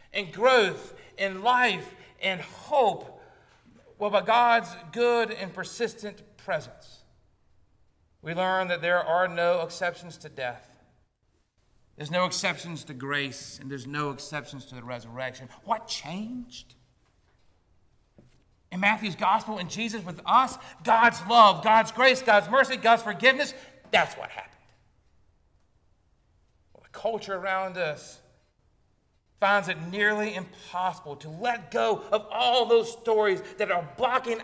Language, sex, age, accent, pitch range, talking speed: English, male, 50-69, American, 140-220 Hz, 125 wpm